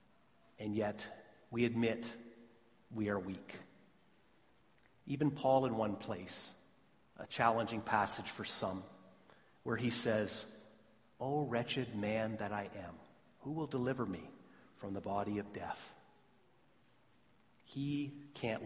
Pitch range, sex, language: 105-125 Hz, male, English